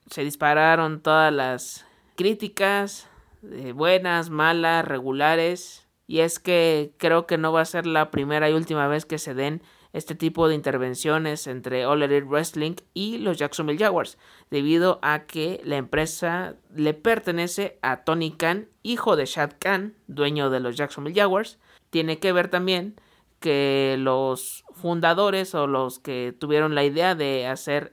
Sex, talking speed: male, 155 wpm